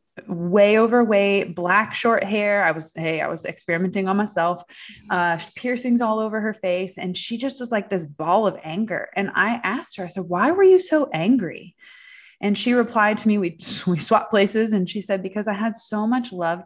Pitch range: 180-225 Hz